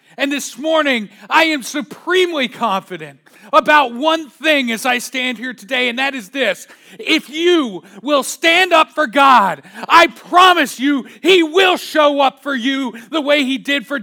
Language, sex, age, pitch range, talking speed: English, male, 40-59, 230-320 Hz, 170 wpm